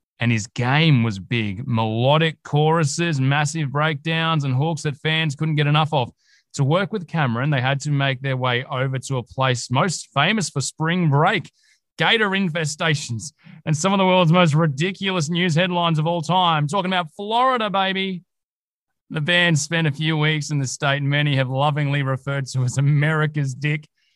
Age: 20-39